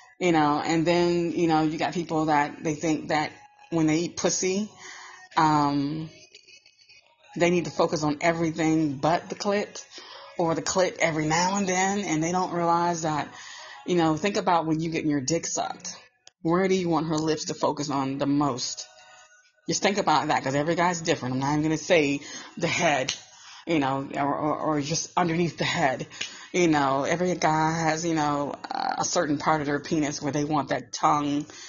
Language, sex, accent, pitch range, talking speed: English, female, American, 150-180 Hz, 195 wpm